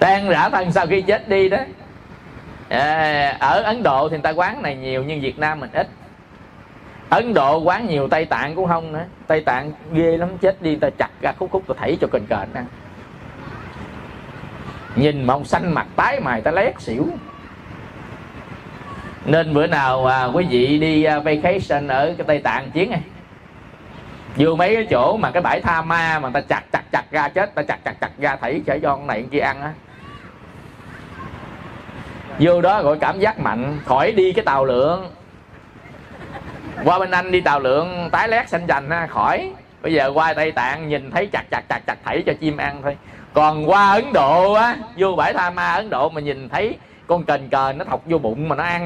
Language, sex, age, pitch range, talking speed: Vietnamese, male, 20-39, 145-185 Hz, 200 wpm